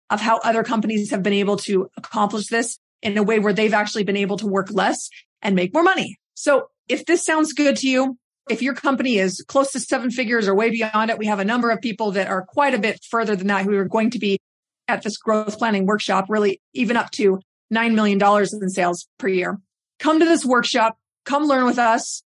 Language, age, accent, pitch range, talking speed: English, 30-49, American, 200-245 Hz, 230 wpm